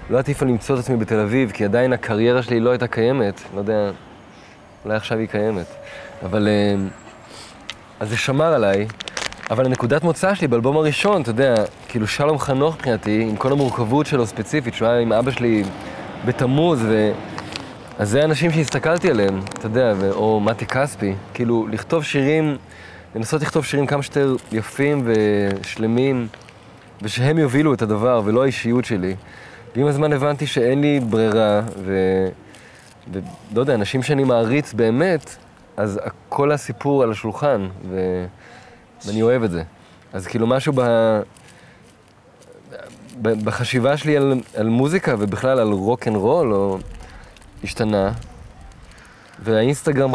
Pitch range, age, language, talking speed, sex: 105-135 Hz, 20-39, Hebrew, 140 wpm, male